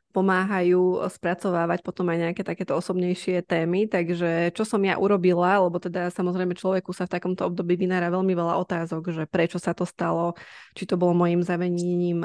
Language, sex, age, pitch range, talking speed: Slovak, female, 20-39, 175-195 Hz, 170 wpm